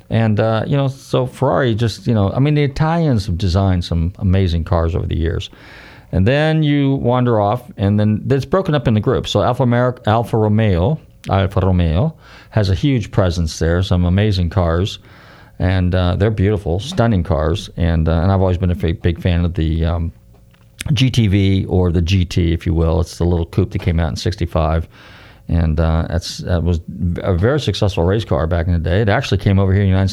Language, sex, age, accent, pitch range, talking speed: English, male, 40-59, American, 85-110 Hz, 210 wpm